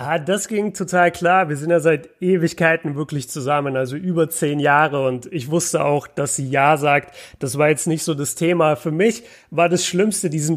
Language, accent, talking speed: German, German, 210 wpm